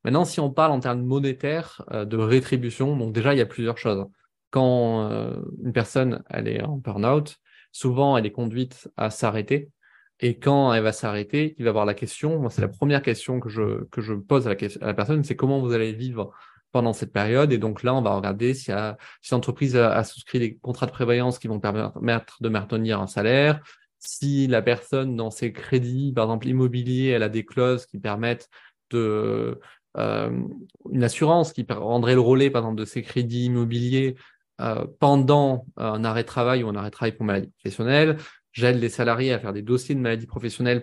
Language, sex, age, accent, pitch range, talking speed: French, male, 20-39, French, 115-135 Hz, 210 wpm